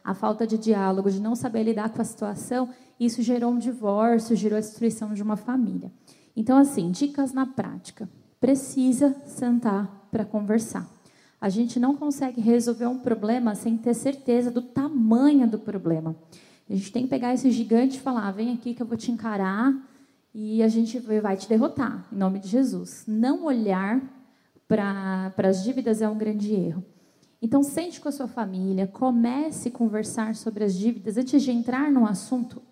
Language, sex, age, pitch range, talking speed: Portuguese, female, 10-29, 200-245 Hz, 175 wpm